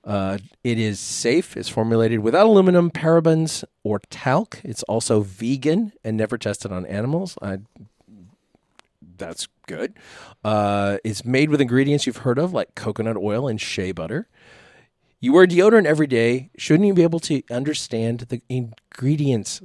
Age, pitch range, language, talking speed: 40-59, 100-130 Hz, English, 145 wpm